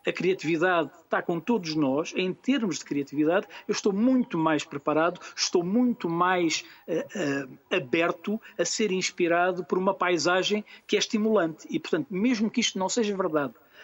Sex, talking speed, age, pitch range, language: male, 155 wpm, 50-69, 155-195 Hz, Portuguese